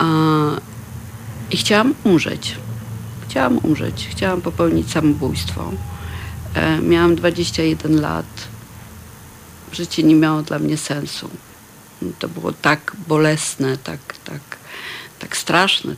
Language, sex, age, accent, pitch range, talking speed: Polish, female, 50-69, native, 105-160 Hz, 90 wpm